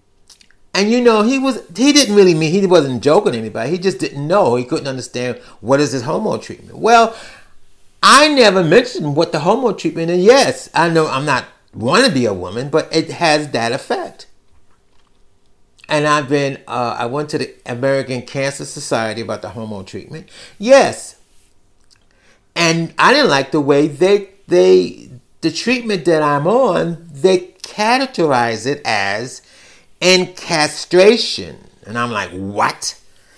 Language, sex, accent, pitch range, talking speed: English, male, American, 115-185 Hz, 155 wpm